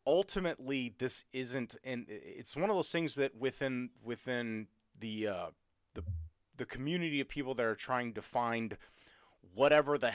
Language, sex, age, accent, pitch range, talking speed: English, male, 30-49, American, 105-140 Hz, 155 wpm